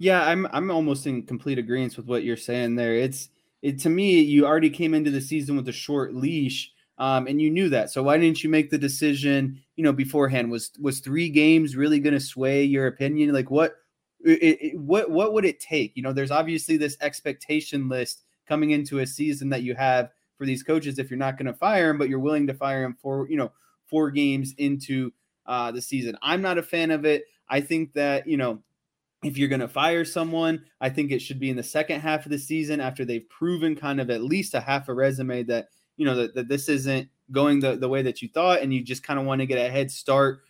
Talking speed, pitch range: 245 wpm, 135-155 Hz